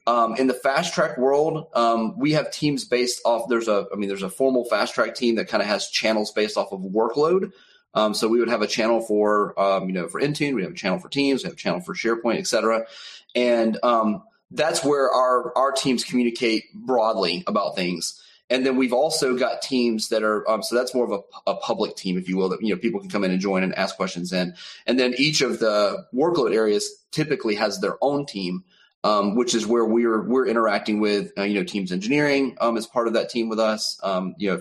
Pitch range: 105-125 Hz